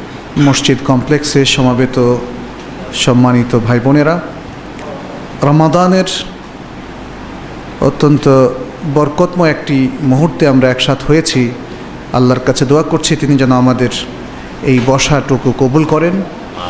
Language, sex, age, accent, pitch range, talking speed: Bengali, male, 50-69, native, 130-155 Hz, 70 wpm